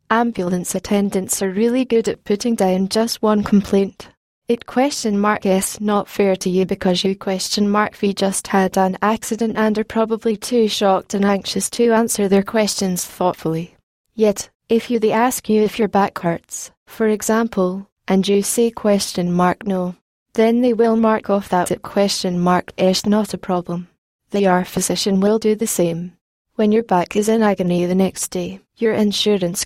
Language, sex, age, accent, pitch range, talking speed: English, female, 20-39, British, 190-220 Hz, 180 wpm